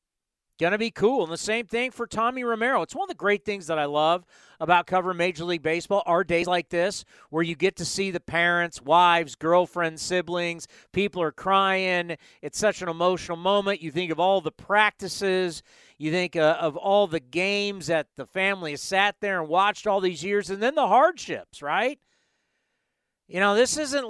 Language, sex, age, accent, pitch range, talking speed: English, male, 40-59, American, 170-220 Hz, 200 wpm